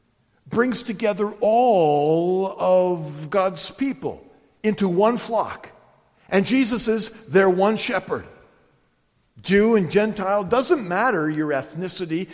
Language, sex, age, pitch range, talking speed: English, male, 50-69, 125-195 Hz, 105 wpm